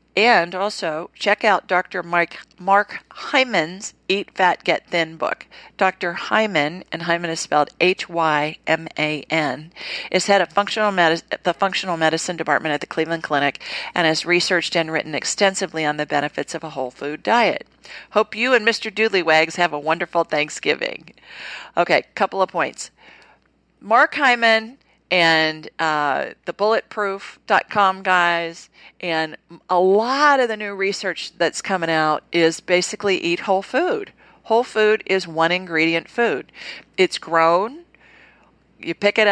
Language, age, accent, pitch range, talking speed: English, 50-69, American, 160-205 Hz, 145 wpm